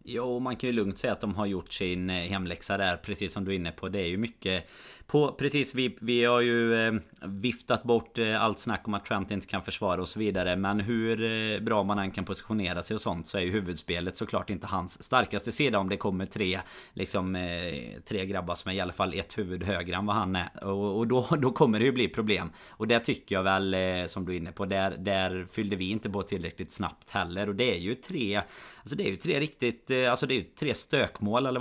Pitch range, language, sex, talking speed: 95-125 Hz, Swedish, male, 235 wpm